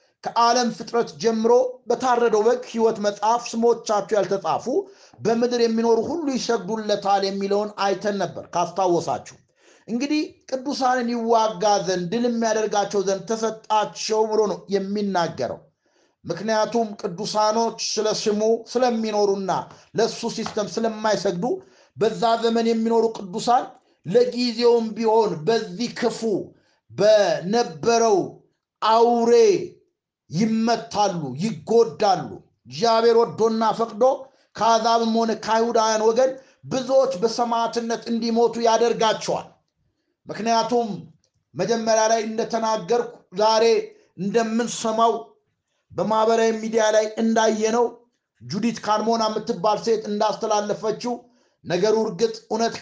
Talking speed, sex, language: 85 wpm, male, Amharic